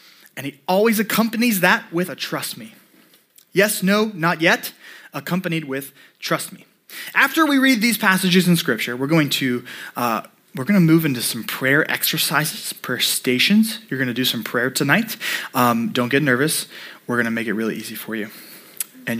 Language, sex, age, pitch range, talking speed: English, male, 20-39, 145-210 Hz, 185 wpm